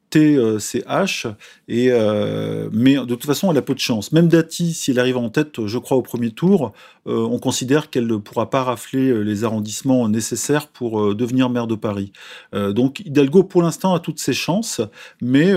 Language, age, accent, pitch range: French, 40-59, French, 110-145 Hz